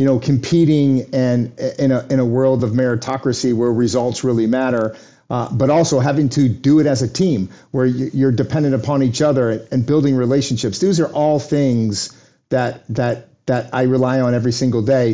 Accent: American